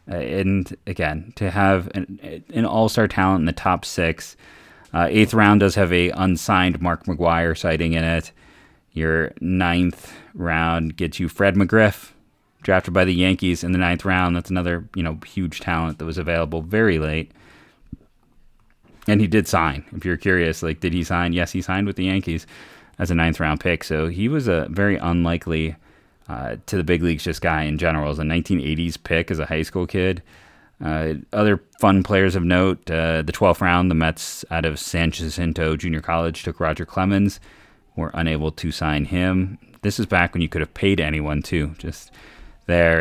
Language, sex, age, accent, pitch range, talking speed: English, male, 20-39, American, 80-95 Hz, 185 wpm